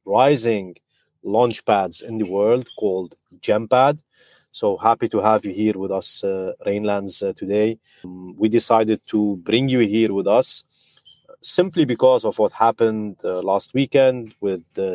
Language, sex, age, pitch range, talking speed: English, male, 30-49, 100-115 Hz, 155 wpm